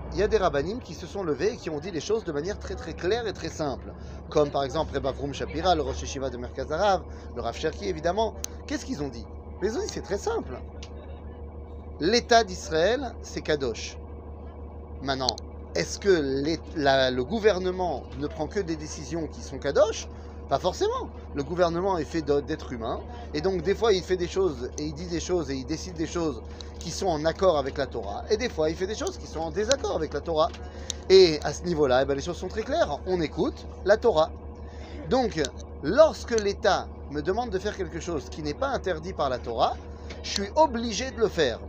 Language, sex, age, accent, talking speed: French, male, 30-49, French, 220 wpm